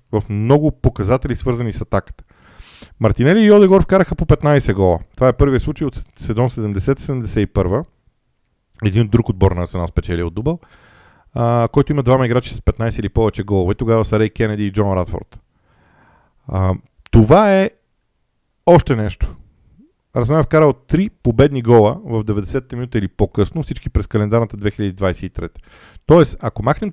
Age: 40-59